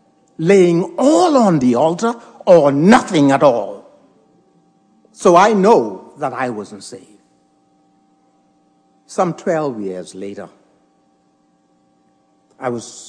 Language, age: English, 60-79